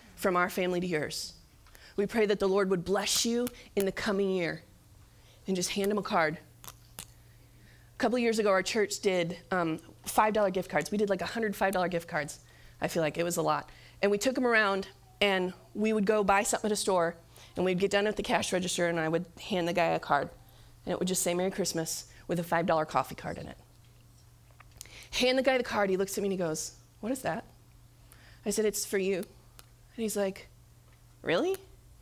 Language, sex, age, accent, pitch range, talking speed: English, female, 30-49, American, 165-235 Hz, 215 wpm